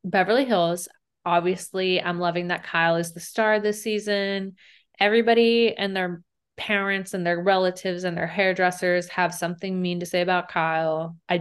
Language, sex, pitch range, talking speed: English, female, 165-200 Hz, 160 wpm